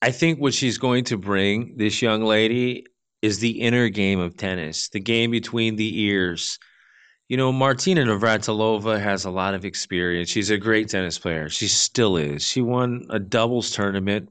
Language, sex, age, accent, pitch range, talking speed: English, male, 30-49, American, 95-120 Hz, 180 wpm